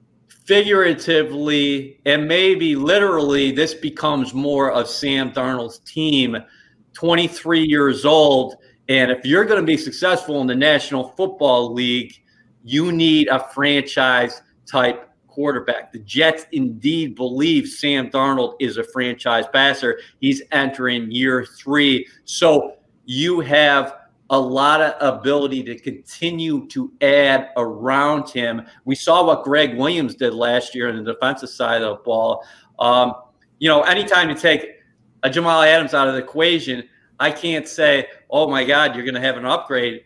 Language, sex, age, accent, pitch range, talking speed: English, male, 40-59, American, 125-155 Hz, 145 wpm